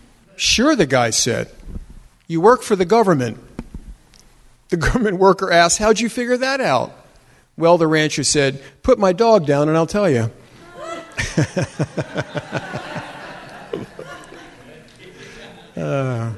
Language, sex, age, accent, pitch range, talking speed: English, male, 50-69, American, 135-180 Hz, 115 wpm